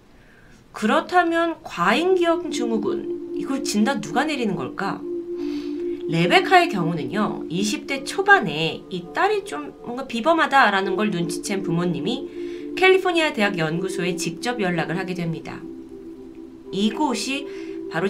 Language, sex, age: Korean, female, 30-49